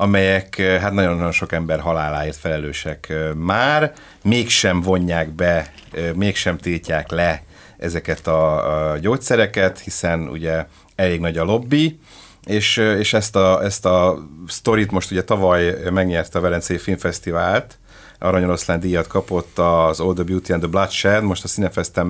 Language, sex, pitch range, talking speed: Hungarian, male, 85-100 Hz, 135 wpm